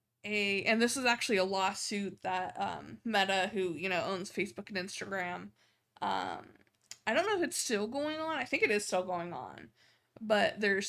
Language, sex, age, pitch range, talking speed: English, female, 20-39, 185-205 Hz, 195 wpm